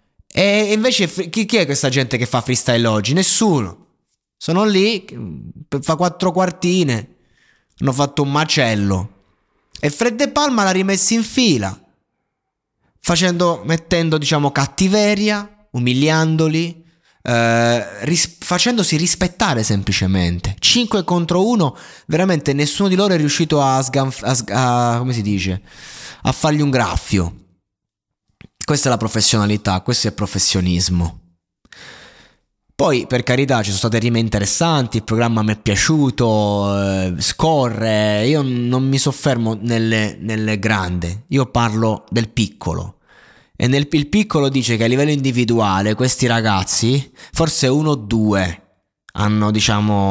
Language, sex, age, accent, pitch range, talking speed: Italian, male, 20-39, native, 105-160 Hz, 130 wpm